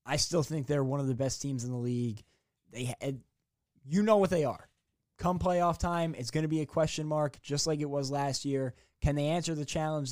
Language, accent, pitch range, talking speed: English, American, 125-145 Hz, 235 wpm